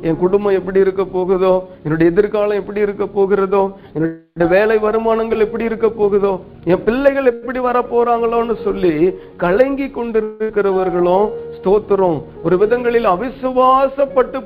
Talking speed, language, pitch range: 110 wpm, Tamil, 175-235 Hz